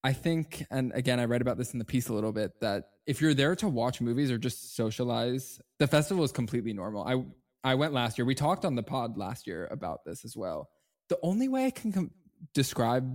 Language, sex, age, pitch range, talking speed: English, male, 10-29, 120-150 Hz, 235 wpm